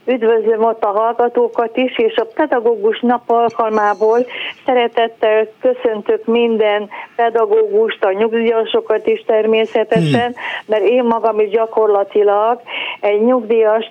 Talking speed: 110 wpm